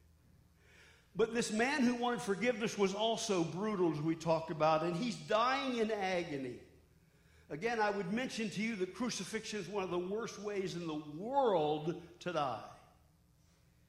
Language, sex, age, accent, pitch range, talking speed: English, male, 50-69, American, 150-230 Hz, 160 wpm